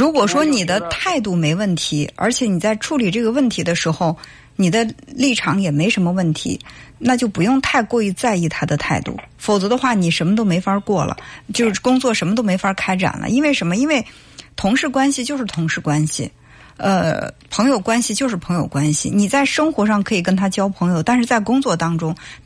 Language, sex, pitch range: Chinese, female, 170-245 Hz